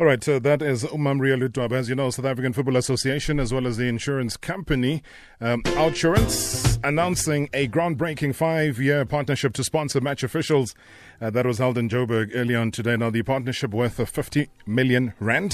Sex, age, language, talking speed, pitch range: male, 30-49, English, 190 wpm, 110-140 Hz